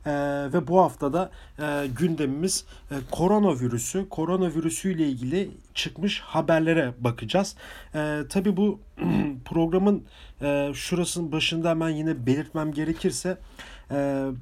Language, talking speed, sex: German, 105 wpm, male